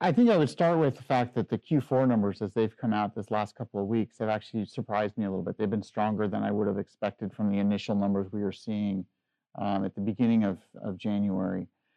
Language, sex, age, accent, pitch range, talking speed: English, male, 40-59, American, 105-140 Hz, 250 wpm